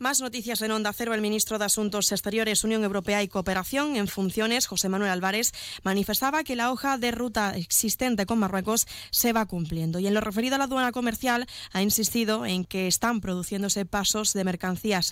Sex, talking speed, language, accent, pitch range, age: female, 190 wpm, Spanish, Spanish, 190-230 Hz, 20-39